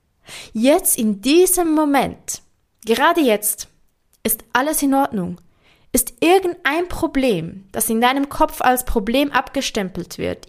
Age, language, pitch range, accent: 20-39, German, 225-290 Hz, German